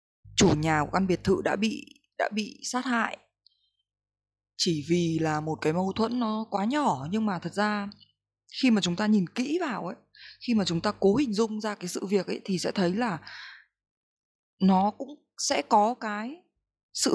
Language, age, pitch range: Vietnamese, 20-39, 165-235 Hz